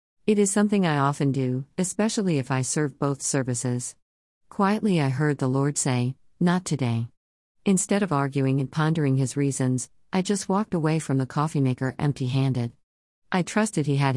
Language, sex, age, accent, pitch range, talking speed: English, female, 50-69, American, 130-170 Hz, 170 wpm